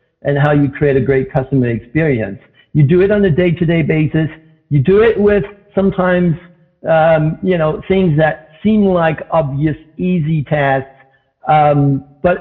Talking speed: 155 wpm